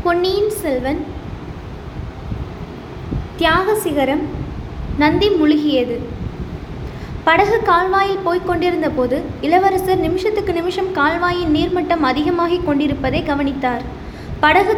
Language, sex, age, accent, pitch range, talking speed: Tamil, female, 20-39, native, 300-375 Hz, 80 wpm